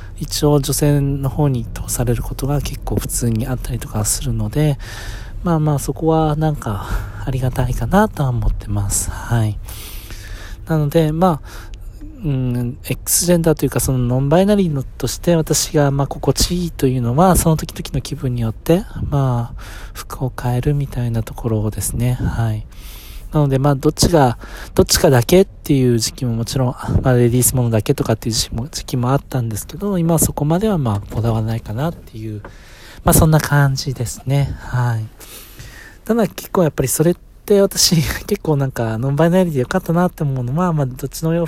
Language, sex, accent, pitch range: Japanese, male, native, 115-155 Hz